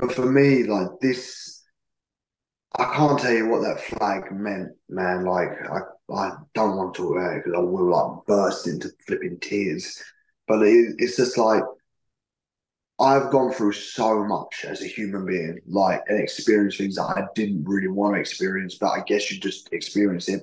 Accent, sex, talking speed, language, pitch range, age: British, male, 180 wpm, English, 95-115 Hz, 20-39